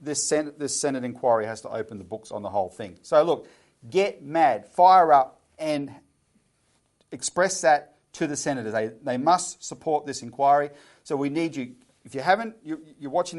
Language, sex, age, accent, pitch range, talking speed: English, male, 40-59, Australian, 130-165 Hz, 180 wpm